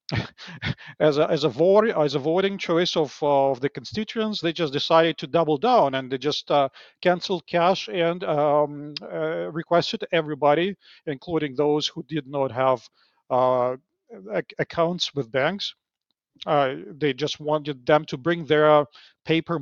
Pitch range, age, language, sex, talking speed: 135-165 Hz, 50-69, English, male, 150 wpm